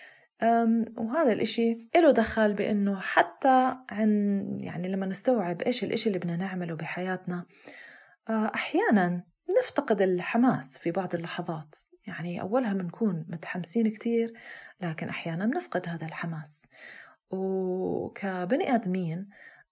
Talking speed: 105 wpm